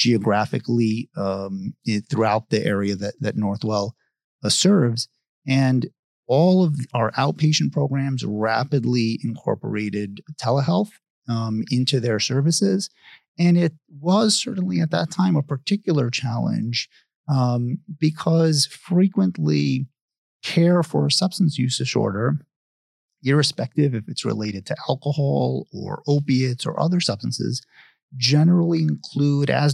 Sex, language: male, English